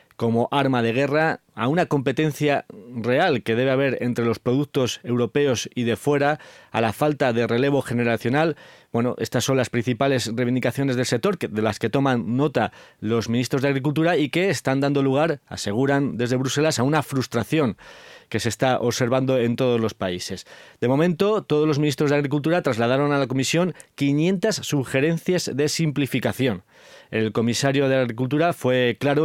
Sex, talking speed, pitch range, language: male, 170 wpm, 120-145 Hz, Spanish